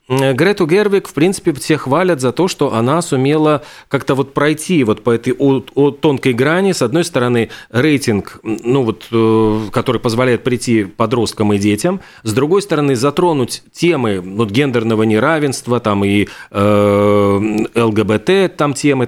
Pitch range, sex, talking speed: 115-155 Hz, male, 140 wpm